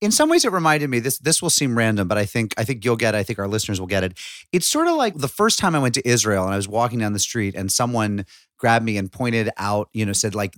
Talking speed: 310 wpm